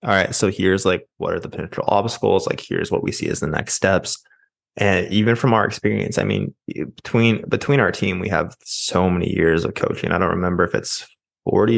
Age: 20-39